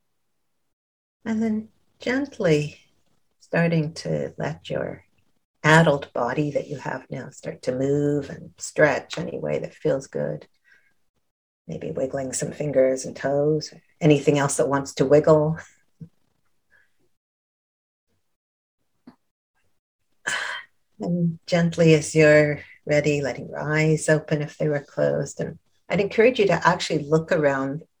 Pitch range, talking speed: 135-155 Hz, 120 wpm